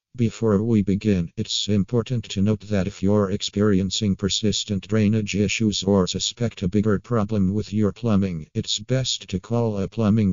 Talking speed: 165 wpm